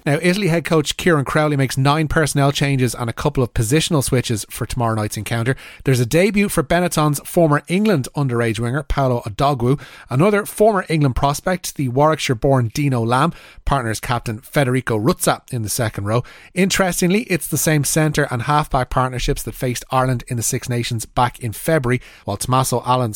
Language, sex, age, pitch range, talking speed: English, male, 30-49, 120-155 Hz, 175 wpm